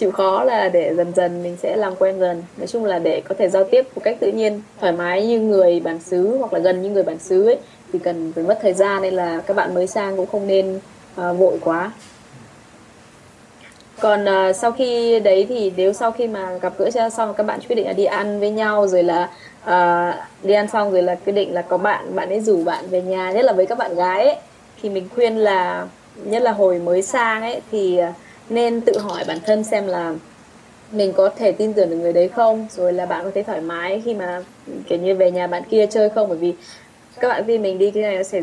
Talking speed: 250 wpm